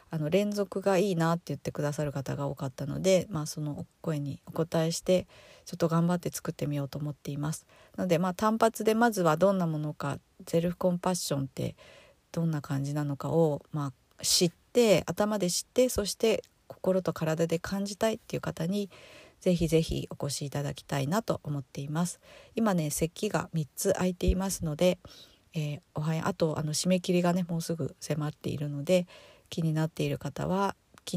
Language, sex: Japanese, female